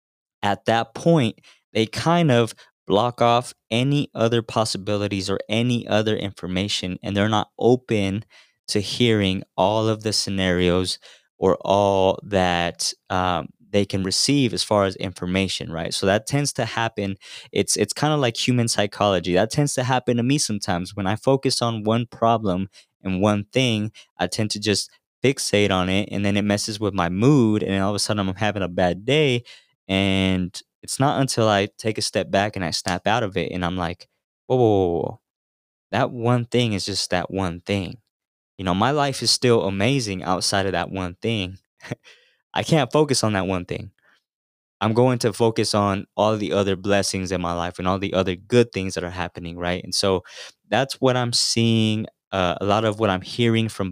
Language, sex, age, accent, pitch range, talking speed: English, male, 20-39, American, 95-115 Hz, 190 wpm